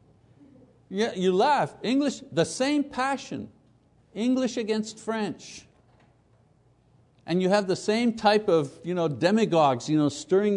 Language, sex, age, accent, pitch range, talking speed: English, male, 60-79, American, 135-215 Hz, 130 wpm